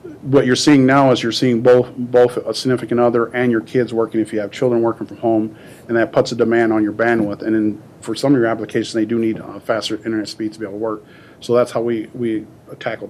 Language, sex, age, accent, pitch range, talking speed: English, male, 40-59, American, 110-125 Hz, 255 wpm